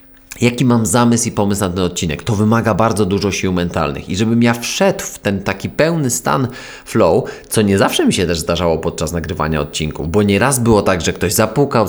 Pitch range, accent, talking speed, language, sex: 95-115 Hz, native, 205 wpm, Polish, male